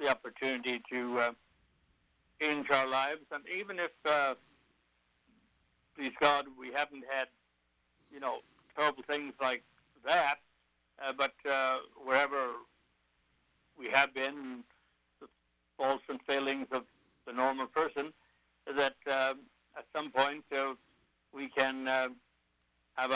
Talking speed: 125 wpm